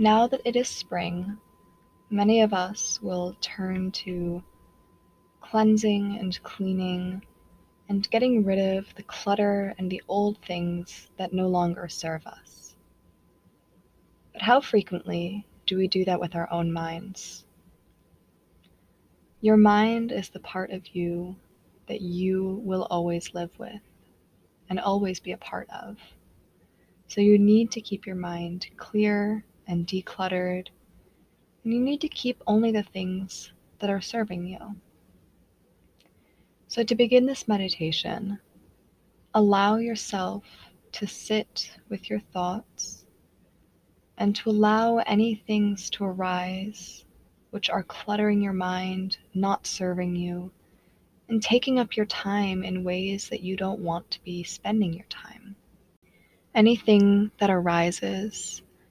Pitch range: 180-210 Hz